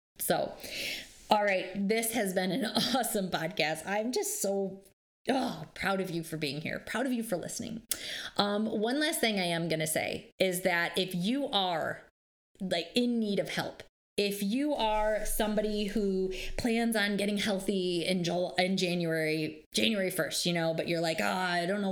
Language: English